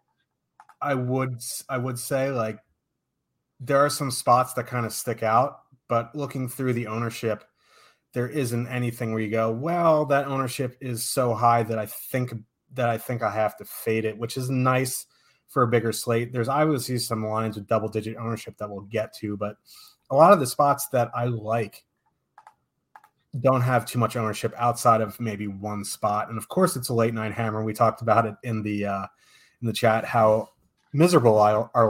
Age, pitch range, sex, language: 30-49, 110-130 Hz, male, English